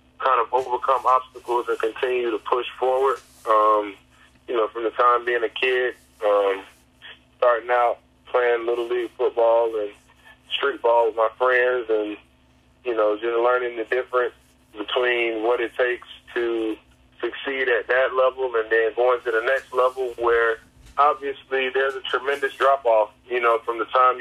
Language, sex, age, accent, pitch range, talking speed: English, male, 20-39, American, 110-130 Hz, 160 wpm